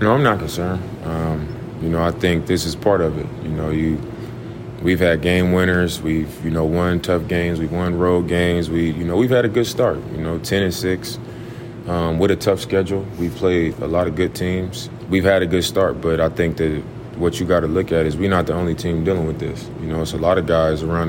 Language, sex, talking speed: English, male, 255 wpm